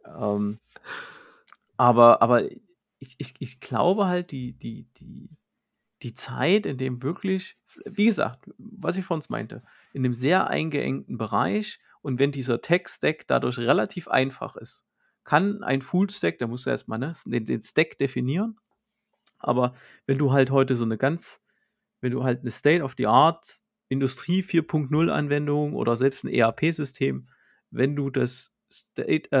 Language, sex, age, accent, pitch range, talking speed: German, male, 40-59, German, 125-150 Hz, 145 wpm